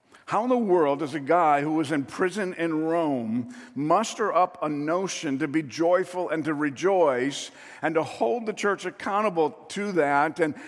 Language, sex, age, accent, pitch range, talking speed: English, male, 50-69, American, 145-180 Hz, 180 wpm